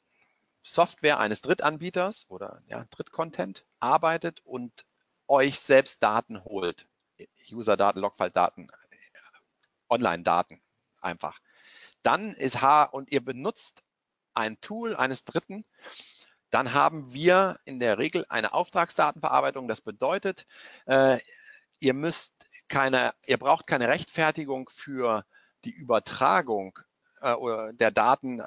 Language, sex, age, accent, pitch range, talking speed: German, male, 50-69, German, 110-155 Hz, 105 wpm